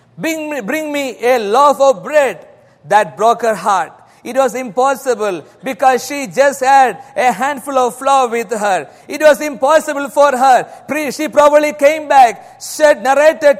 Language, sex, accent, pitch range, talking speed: English, male, Indian, 225-290 Hz, 160 wpm